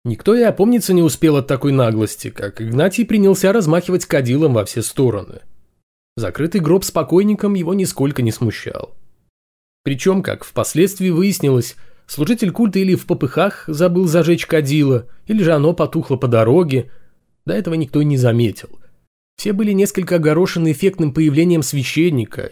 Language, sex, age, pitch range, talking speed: Russian, male, 20-39, 125-190 Hz, 145 wpm